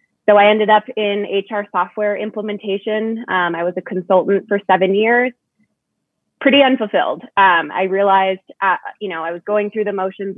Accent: American